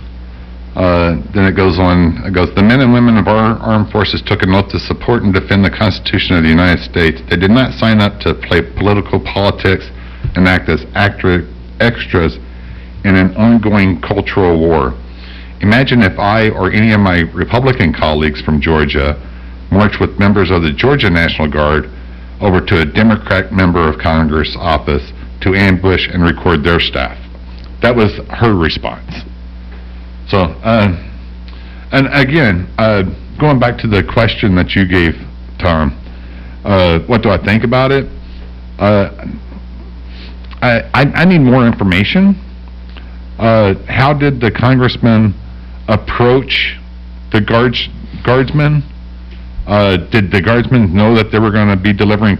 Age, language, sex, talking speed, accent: 60-79, English, male, 150 wpm, American